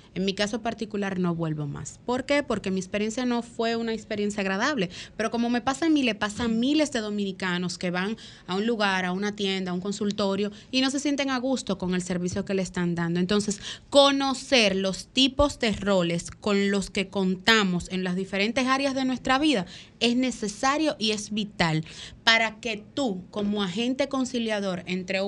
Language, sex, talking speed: Spanish, female, 195 wpm